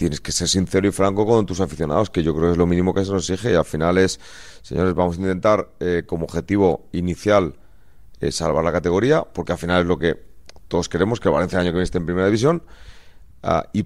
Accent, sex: Spanish, male